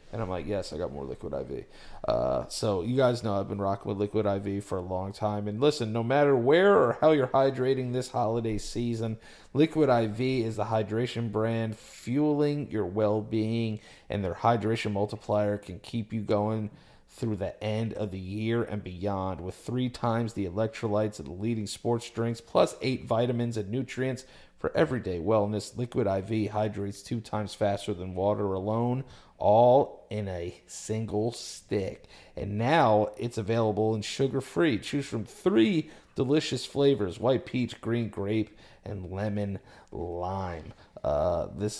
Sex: male